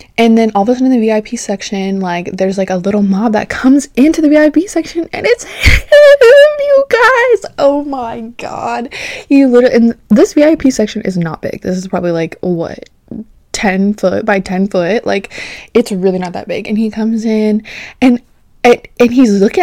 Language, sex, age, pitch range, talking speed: English, female, 20-39, 200-270 Hz, 195 wpm